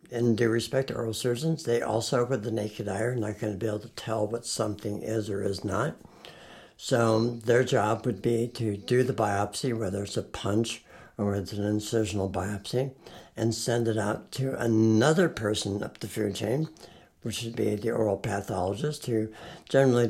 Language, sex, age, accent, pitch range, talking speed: English, male, 60-79, American, 110-130 Hz, 190 wpm